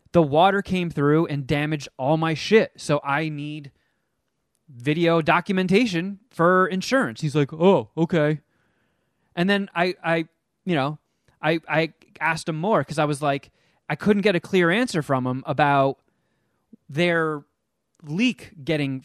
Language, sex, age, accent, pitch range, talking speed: English, male, 20-39, American, 145-185 Hz, 150 wpm